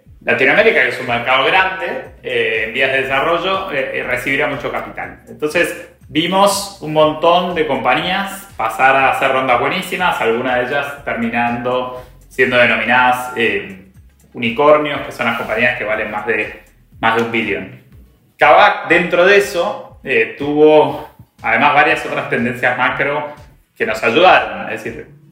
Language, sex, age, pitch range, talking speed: Spanish, male, 20-39, 125-170 Hz, 150 wpm